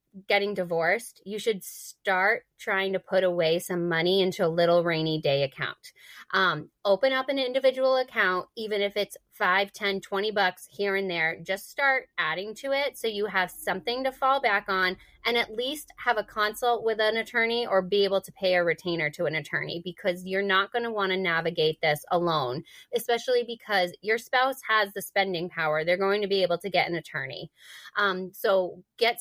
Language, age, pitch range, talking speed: English, 20-39, 180-225 Hz, 195 wpm